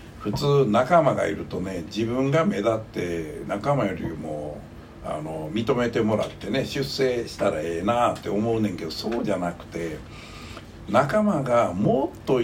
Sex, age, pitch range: male, 60-79, 90-150 Hz